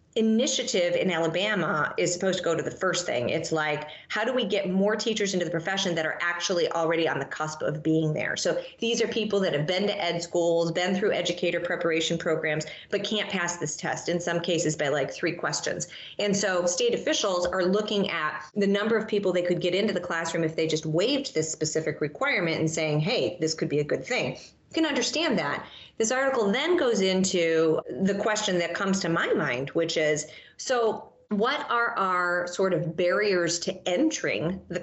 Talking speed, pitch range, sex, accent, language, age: 205 wpm, 160-210 Hz, female, American, English, 30-49